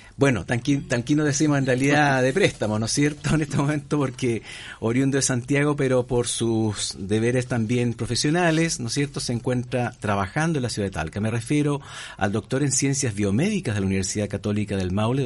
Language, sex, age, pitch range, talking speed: Spanish, male, 50-69, 105-140 Hz, 190 wpm